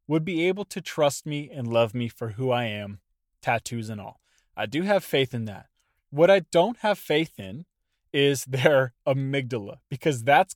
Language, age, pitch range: English, 20-39, 115-160 Hz